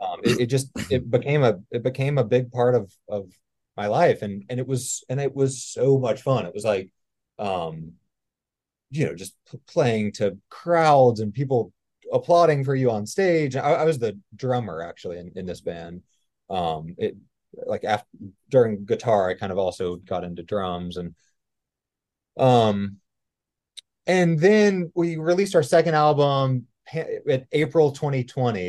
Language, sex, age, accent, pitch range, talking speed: English, male, 30-49, American, 105-140 Hz, 165 wpm